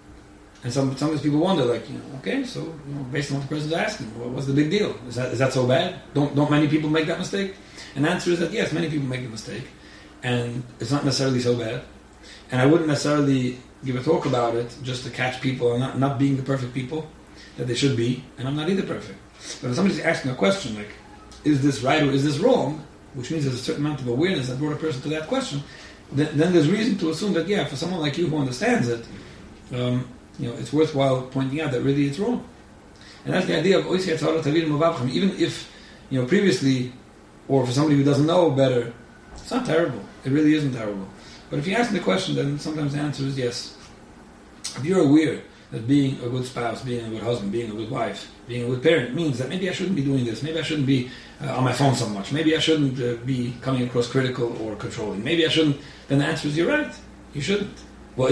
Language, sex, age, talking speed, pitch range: English, male, 30-49, 240 wpm, 125-155 Hz